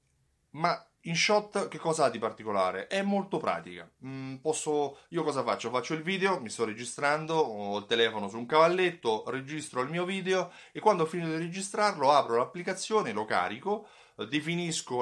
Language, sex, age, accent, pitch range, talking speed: Italian, male, 30-49, native, 110-160 Hz, 170 wpm